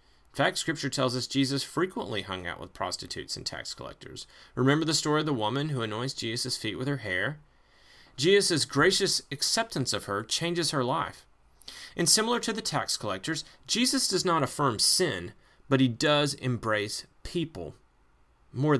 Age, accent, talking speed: 30-49, American, 165 wpm